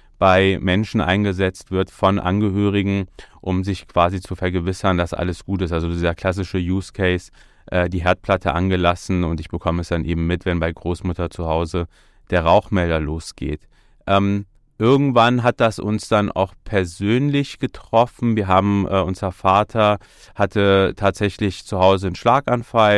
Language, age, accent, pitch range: German, 30-49, German, 90-105 Hz